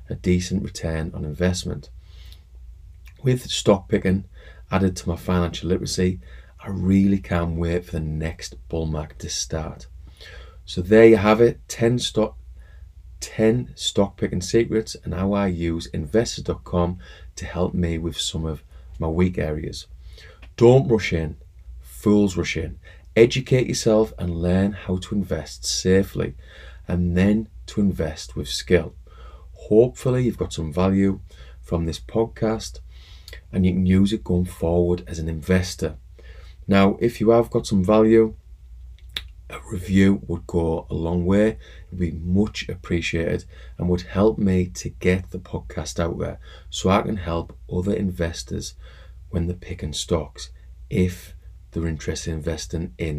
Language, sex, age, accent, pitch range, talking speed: English, male, 30-49, British, 75-95 Hz, 150 wpm